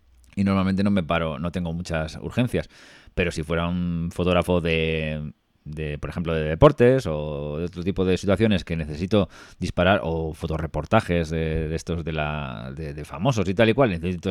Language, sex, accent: Spanish, male, Spanish